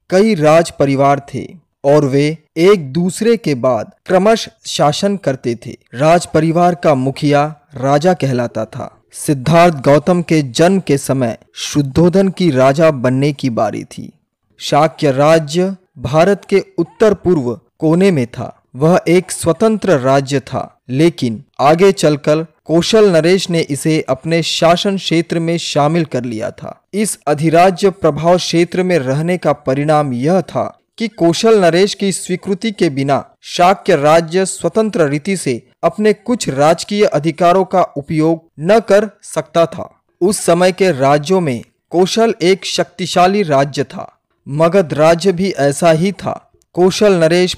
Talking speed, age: 145 wpm, 20-39